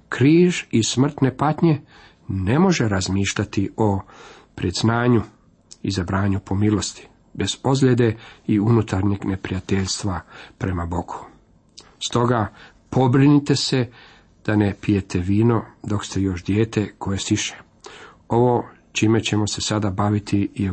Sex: male